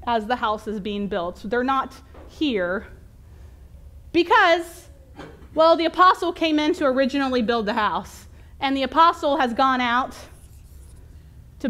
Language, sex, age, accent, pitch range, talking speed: English, female, 30-49, American, 230-300 Hz, 145 wpm